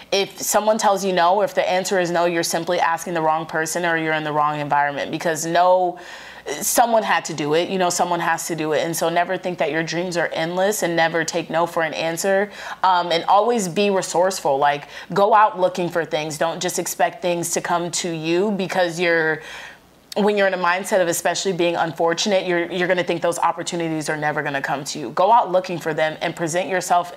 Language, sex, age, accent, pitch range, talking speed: English, female, 30-49, American, 165-185 Hz, 230 wpm